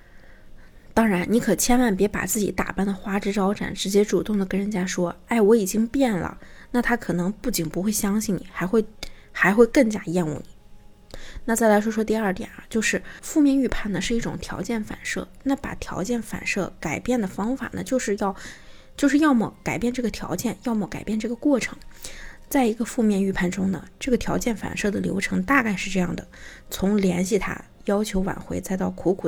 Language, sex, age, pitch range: Chinese, female, 20-39, 190-240 Hz